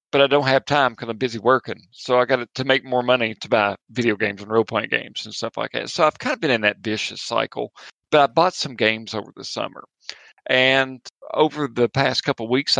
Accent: American